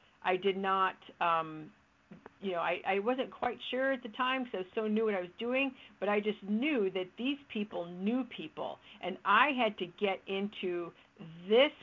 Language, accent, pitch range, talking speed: English, American, 175-220 Hz, 190 wpm